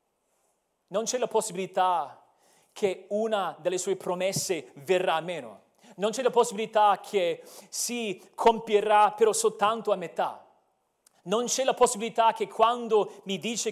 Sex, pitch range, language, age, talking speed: male, 170-225 Hz, Italian, 40-59, 135 wpm